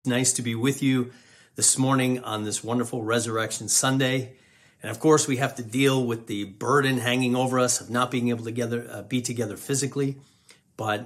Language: English